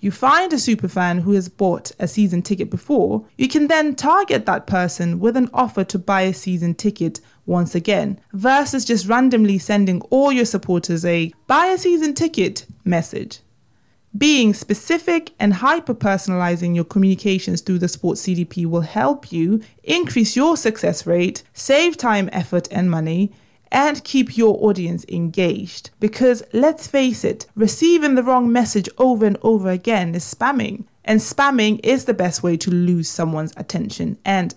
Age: 20-39